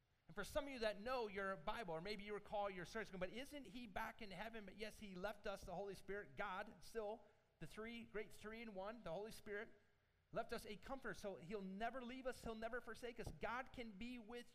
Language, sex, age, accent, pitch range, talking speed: English, male, 40-59, American, 130-210 Hz, 230 wpm